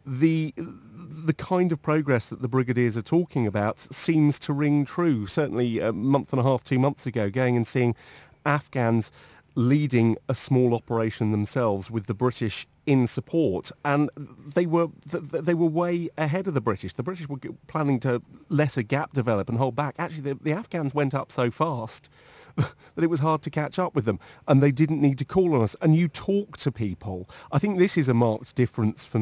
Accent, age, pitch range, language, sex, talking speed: British, 40-59, 110-145 Hz, English, male, 200 wpm